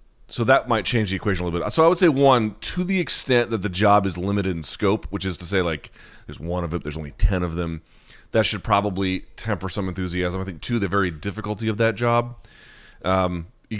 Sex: male